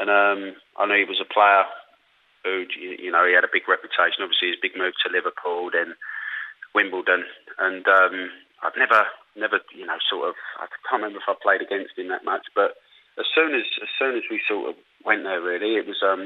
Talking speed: 220 wpm